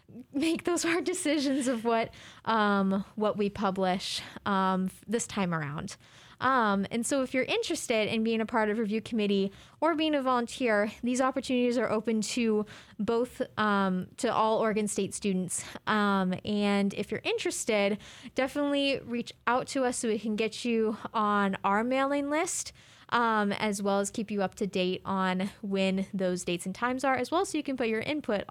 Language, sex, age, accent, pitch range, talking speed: English, female, 20-39, American, 195-245 Hz, 180 wpm